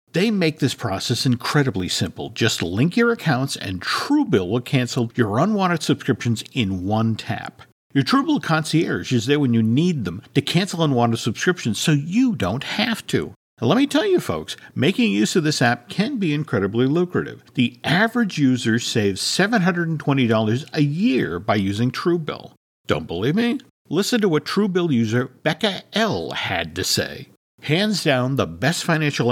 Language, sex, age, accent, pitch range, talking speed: English, male, 50-69, American, 120-175 Hz, 165 wpm